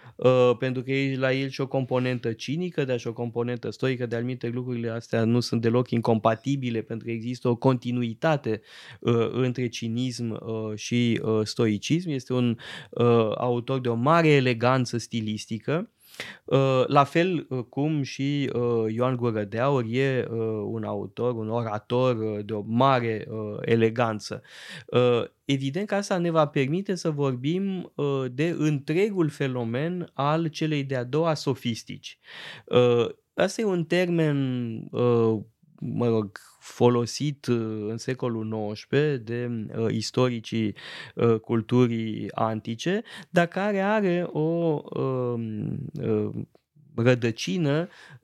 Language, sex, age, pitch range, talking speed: Romanian, male, 20-39, 115-140 Hz, 115 wpm